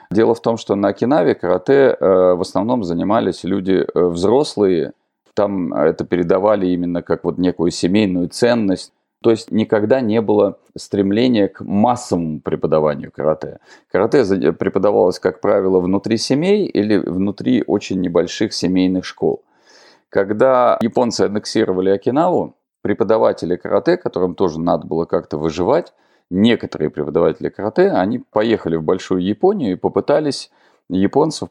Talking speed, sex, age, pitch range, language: 130 wpm, male, 30-49, 90-105 Hz, Russian